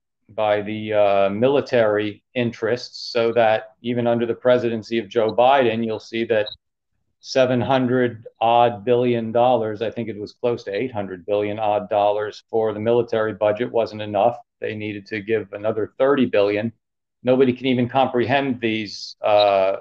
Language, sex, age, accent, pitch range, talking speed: English, male, 40-59, American, 105-125 Hz, 150 wpm